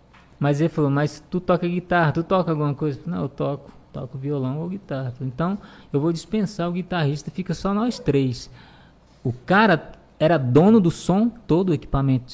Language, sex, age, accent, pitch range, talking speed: Portuguese, male, 20-39, Brazilian, 130-170 Hz, 180 wpm